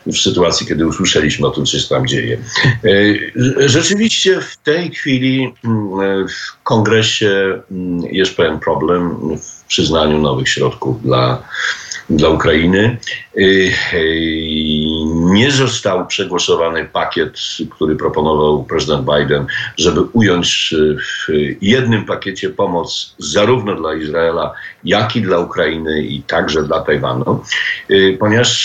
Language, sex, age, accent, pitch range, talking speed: Polish, male, 50-69, native, 75-115 Hz, 110 wpm